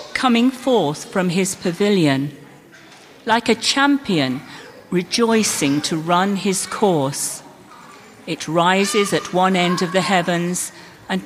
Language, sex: English, female